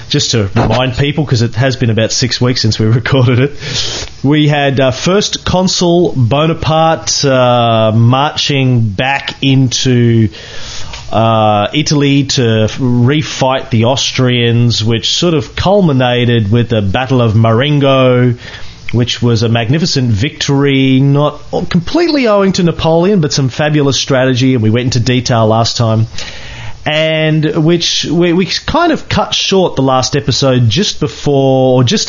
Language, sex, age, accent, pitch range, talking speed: English, male, 30-49, Australian, 120-150 Hz, 140 wpm